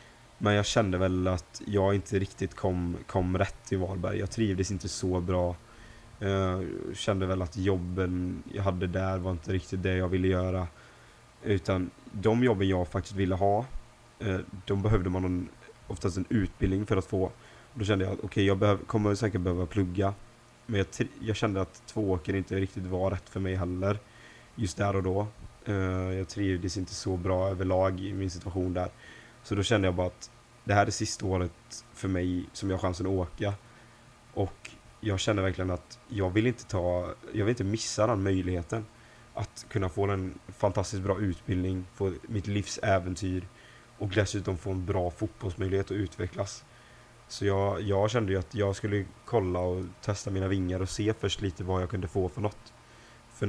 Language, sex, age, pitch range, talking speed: Swedish, male, 20-39, 95-110 Hz, 195 wpm